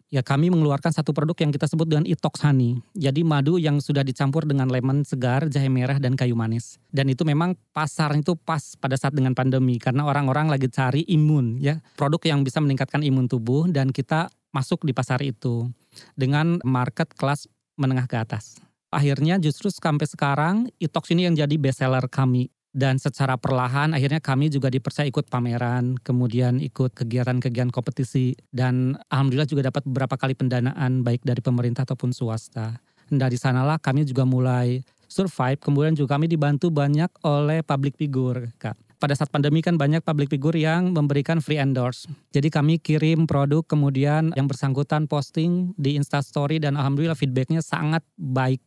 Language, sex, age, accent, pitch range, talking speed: Indonesian, male, 20-39, native, 130-155 Hz, 165 wpm